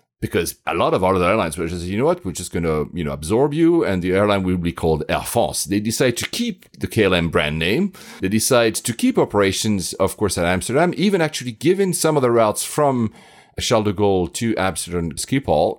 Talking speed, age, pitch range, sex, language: 220 wpm, 40-59, 95-140 Hz, male, English